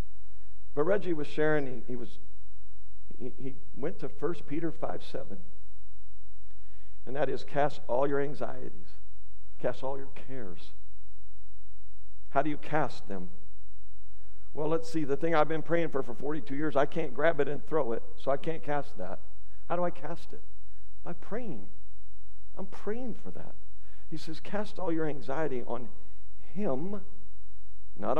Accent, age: American, 60-79